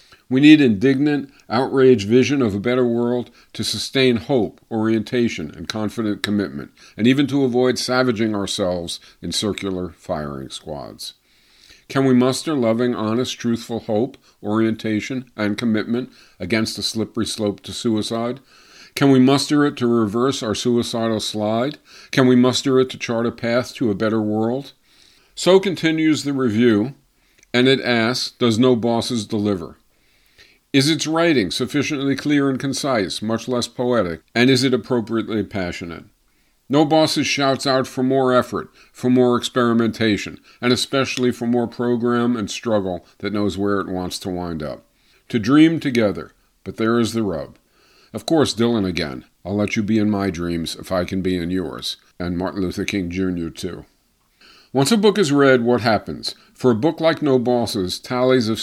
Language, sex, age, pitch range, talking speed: English, male, 50-69, 105-130 Hz, 165 wpm